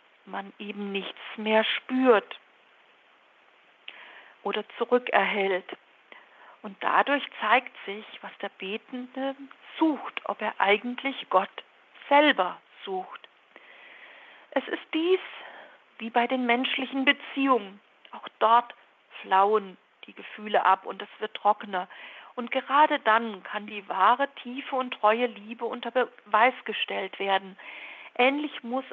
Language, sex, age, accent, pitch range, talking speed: German, female, 50-69, German, 210-260 Hz, 115 wpm